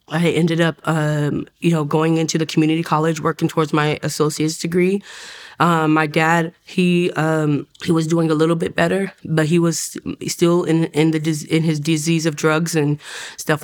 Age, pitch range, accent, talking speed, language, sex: 20-39, 155-170 Hz, American, 185 wpm, English, female